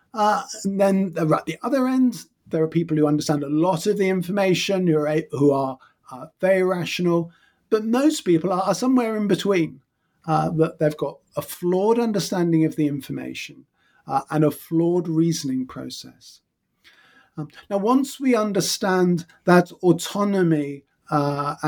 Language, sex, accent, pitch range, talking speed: English, male, British, 150-190 Hz, 155 wpm